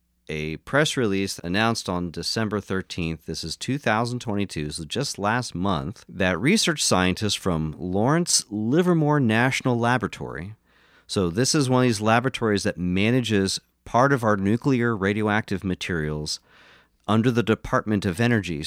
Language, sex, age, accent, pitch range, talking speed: English, male, 40-59, American, 90-115 Hz, 135 wpm